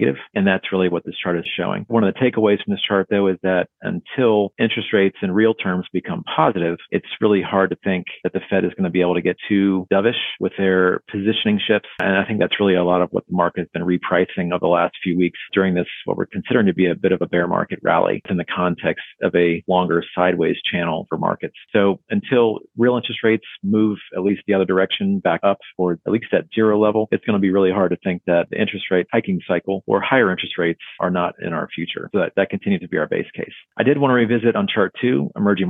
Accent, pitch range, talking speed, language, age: American, 90-105 Hz, 250 wpm, English, 40-59